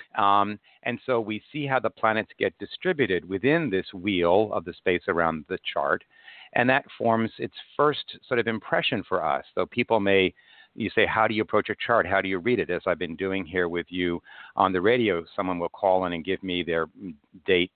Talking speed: 220 wpm